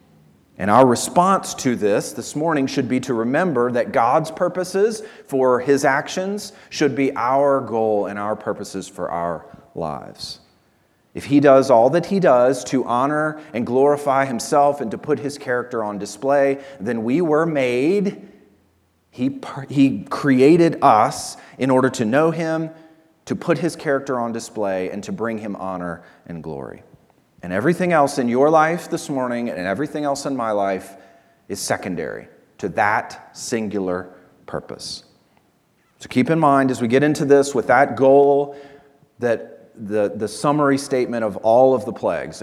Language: English